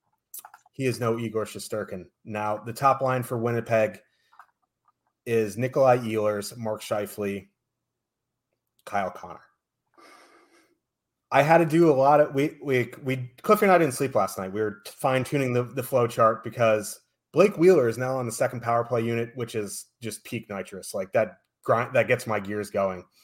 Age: 30-49